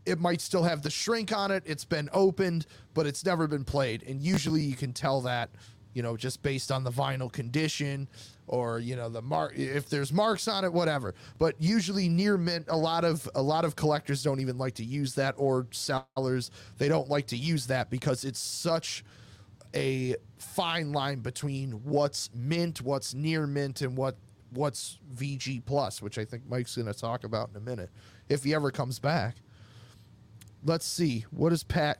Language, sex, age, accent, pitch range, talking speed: English, male, 30-49, American, 120-155 Hz, 195 wpm